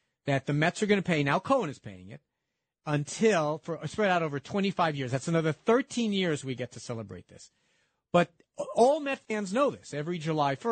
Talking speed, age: 200 wpm, 50-69